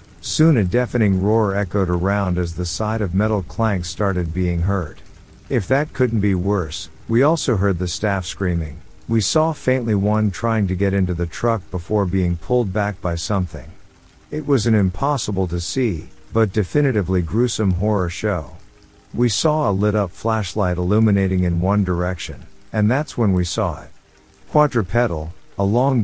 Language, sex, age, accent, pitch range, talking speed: English, male, 50-69, American, 90-115 Hz, 165 wpm